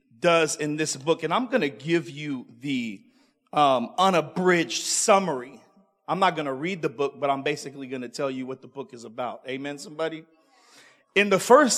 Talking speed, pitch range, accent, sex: 195 wpm, 145-185 Hz, American, male